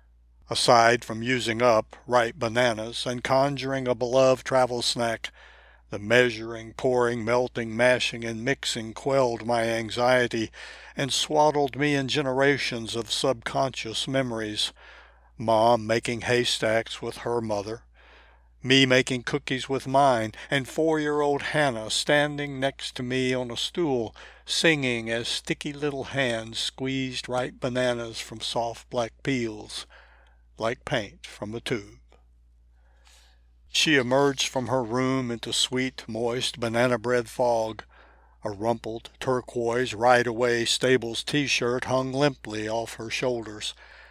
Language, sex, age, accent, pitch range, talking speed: English, male, 60-79, American, 110-130 Hz, 125 wpm